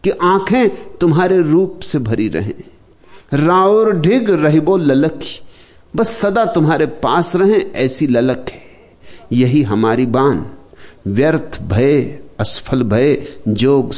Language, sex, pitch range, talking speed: Hindi, male, 95-145 Hz, 115 wpm